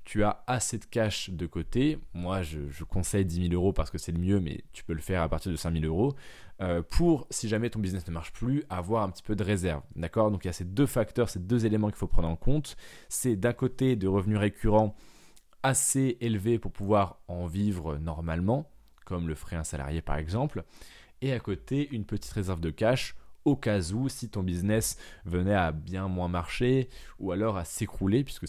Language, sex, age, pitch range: French, male, 20-39, 90-110 Hz